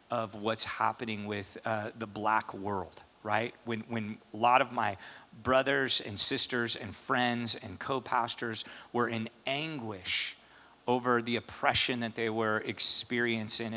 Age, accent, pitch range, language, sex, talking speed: 40-59, American, 110-135 Hz, English, male, 140 wpm